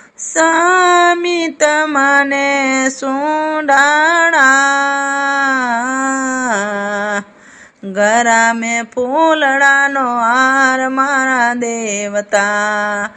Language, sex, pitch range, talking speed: Gujarati, female, 210-280 Hz, 50 wpm